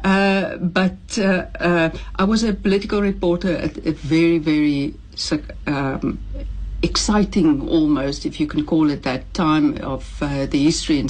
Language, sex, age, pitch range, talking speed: English, female, 60-79, 150-180 Hz, 150 wpm